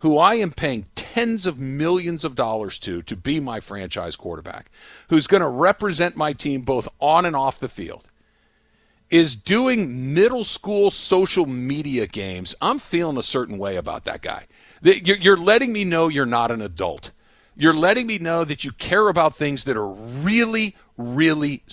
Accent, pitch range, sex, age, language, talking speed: American, 150-225 Hz, male, 50-69, English, 175 wpm